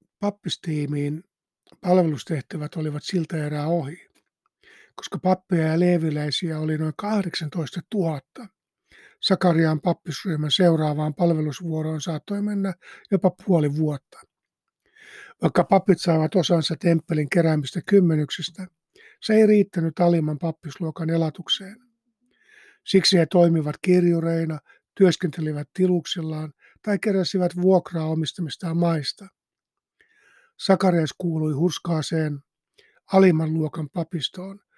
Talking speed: 90 wpm